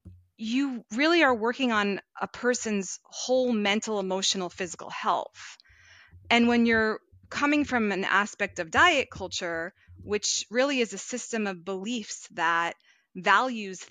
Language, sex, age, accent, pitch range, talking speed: English, female, 20-39, American, 180-220 Hz, 135 wpm